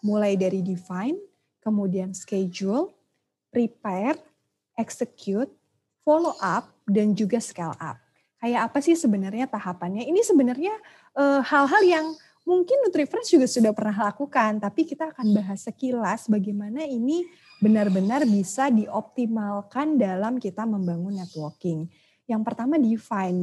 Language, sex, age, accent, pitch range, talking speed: Indonesian, female, 30-49, native, 200-285 Hz, 120 wpm